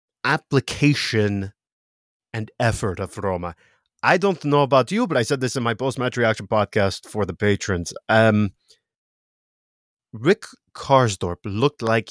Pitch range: 110-150 Hz